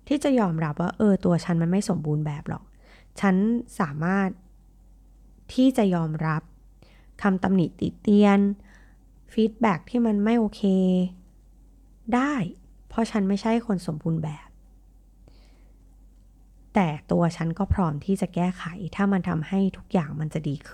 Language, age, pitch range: Thai, 20-39, 150-195 Hz